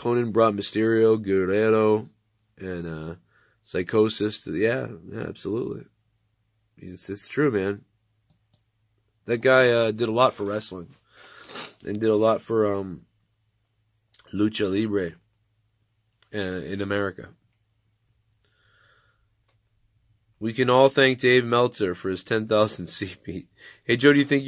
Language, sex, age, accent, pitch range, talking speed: English, male, 30-49, American, 110-130 Hz, 120 wpm